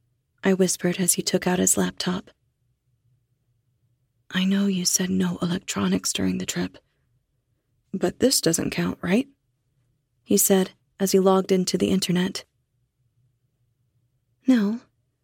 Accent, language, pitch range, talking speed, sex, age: American, English, 125-195 Hz, 120 wpm, female, 30-49